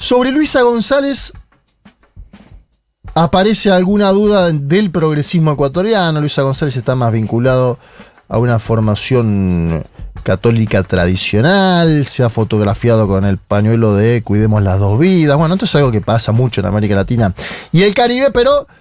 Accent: Argentinian